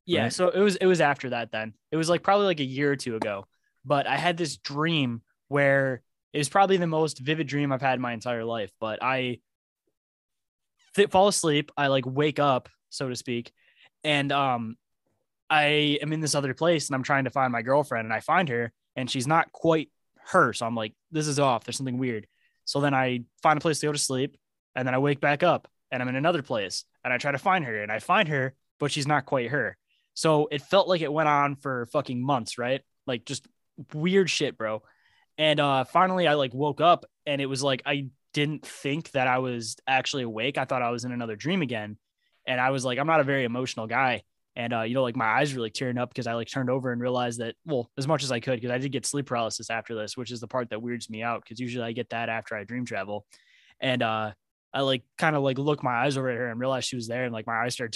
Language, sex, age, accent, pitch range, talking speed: English, male, 10-29, American, 120-145 Hz, 255 wpm